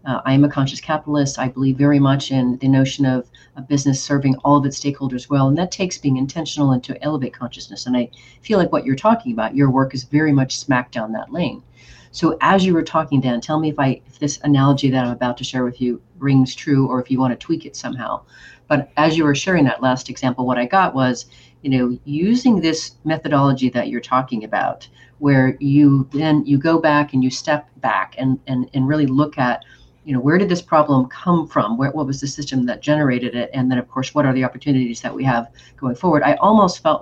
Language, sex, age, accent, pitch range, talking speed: English, female, 40-59, American, 130-150 Hz, 235 wpm